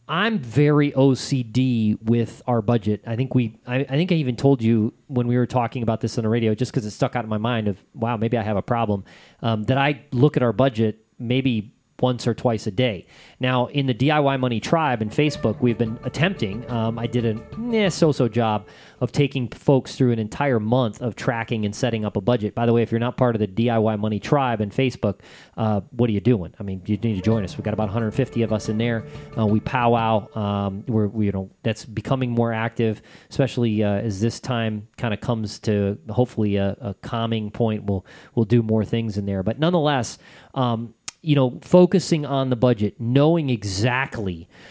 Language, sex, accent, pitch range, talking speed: English, male, American, 110-135 Hz, 220 wpm